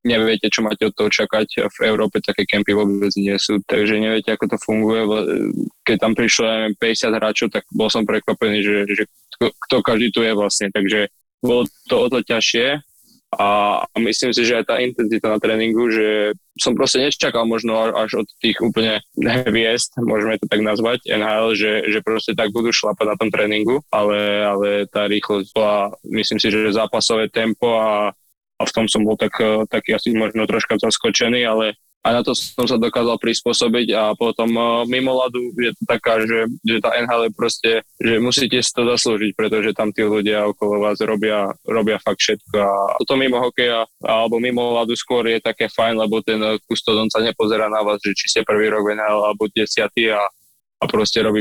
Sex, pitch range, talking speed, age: male, 105-115 Hz, 185 wpm, 20-39